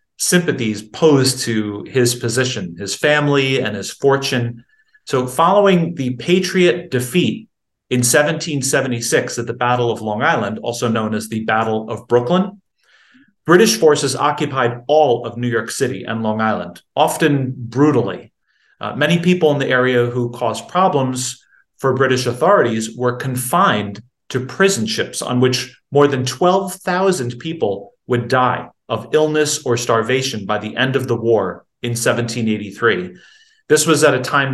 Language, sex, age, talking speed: English, male, 30-49, 150 wpm